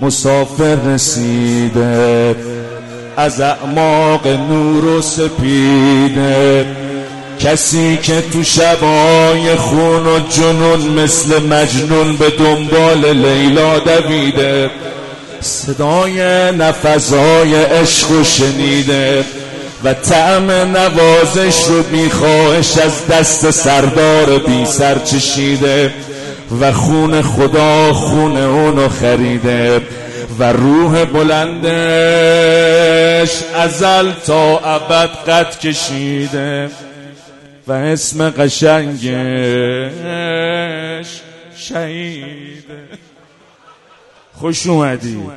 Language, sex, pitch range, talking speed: Persian, male, 135-165 Hz, 70 wpm